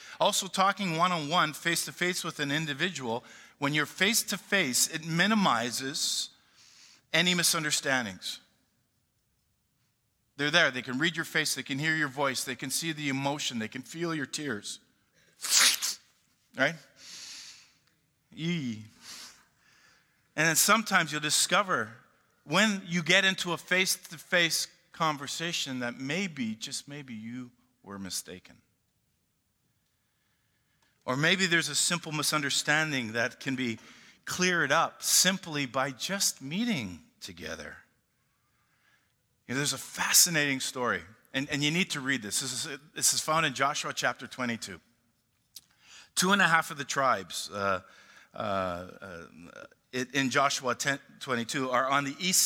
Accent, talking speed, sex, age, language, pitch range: American, 125 wpm, male, 50-69, English, 130-170 Hz